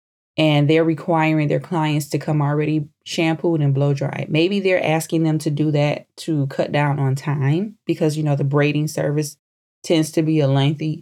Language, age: English, 20-39